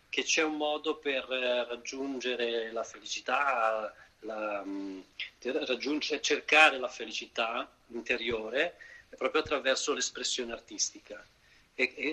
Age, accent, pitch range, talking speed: 40-59, native, 120-145 Hz, 100 wpm